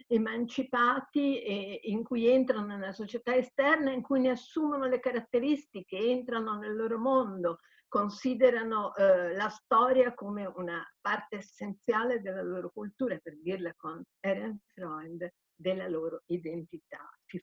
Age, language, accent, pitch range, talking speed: 50-69, Italian, native, 185-245 Hz, 125 wpm